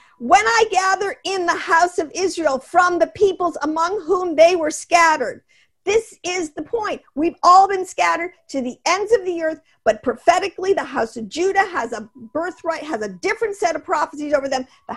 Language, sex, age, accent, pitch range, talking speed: English, female, 50-69, American, 260-380 Hz, 195 wpm